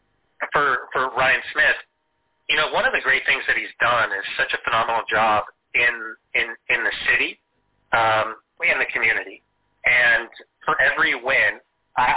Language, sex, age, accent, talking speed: English, male, 30-49, American, 165 wpm